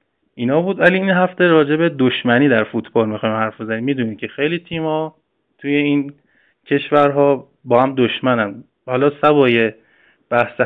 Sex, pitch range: male, 115-145 Hz